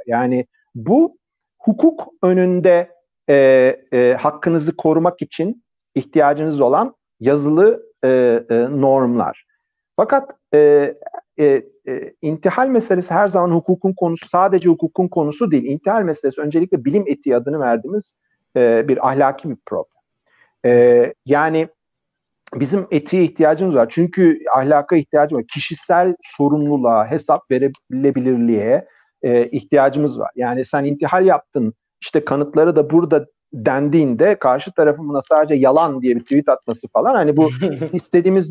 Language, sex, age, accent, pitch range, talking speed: Turkish, male, 50-69, native, 135-185 Hz, 125 wpm